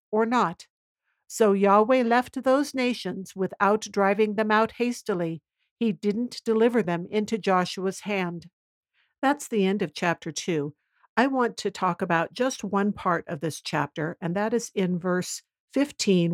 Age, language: 60-79, English